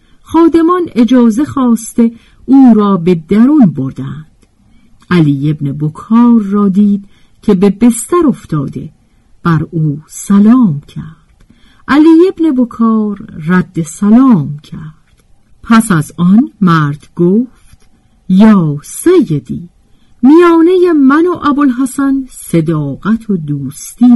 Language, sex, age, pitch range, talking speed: Persian, female, 50-69, 165-270 Hz, 100 wpm